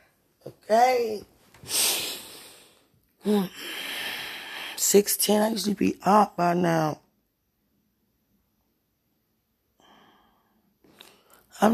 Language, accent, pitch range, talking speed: English, American, 155-195 Hz, 60 wpm